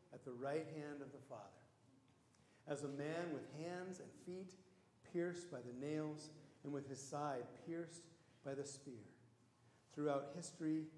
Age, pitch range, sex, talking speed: 50-69, 125-155 Hz, male, 155 wpm